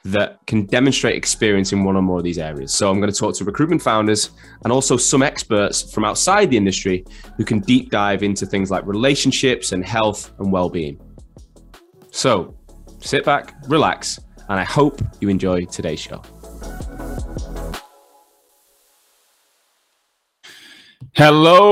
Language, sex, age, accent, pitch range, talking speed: English, male, 20-39, British, 100-140 Hz, 140 wpm